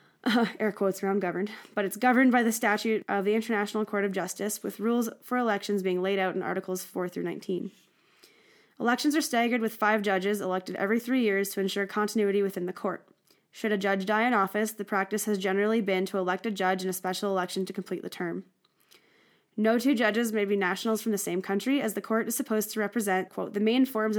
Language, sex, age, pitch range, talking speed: English, female, 10-29, 190-220 Hz, 220 wpm